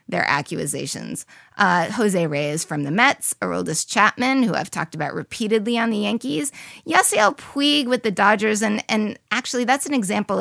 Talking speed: 165 wpm